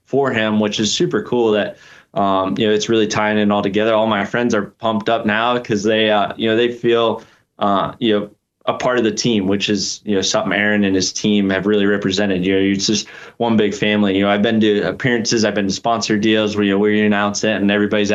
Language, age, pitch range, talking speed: English, 20-39, 100-115 Hz, 255 wpm